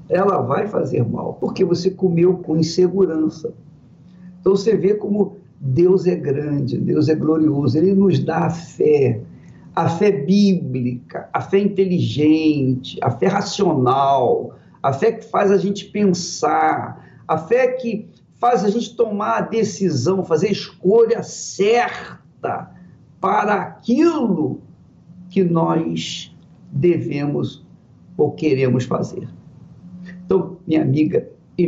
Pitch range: 155-200 Hz